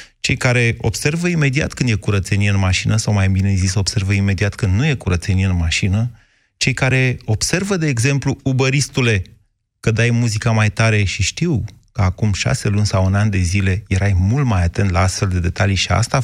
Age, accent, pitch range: 30-49, native, 95-120 Hz